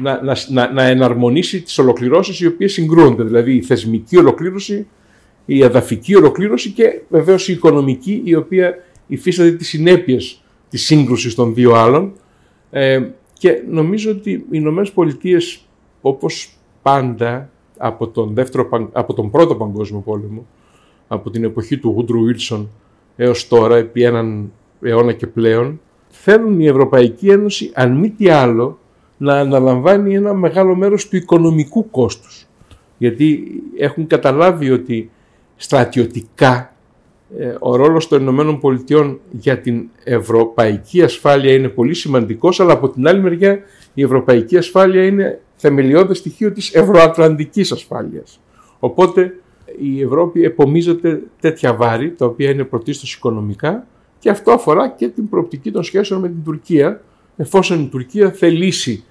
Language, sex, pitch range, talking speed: Greek, male, 120-175 Hz, 135 wpm